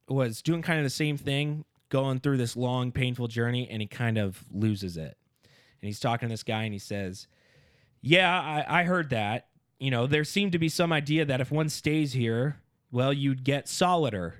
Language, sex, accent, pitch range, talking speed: English, male, American, 110-140 Hz, 210 wpm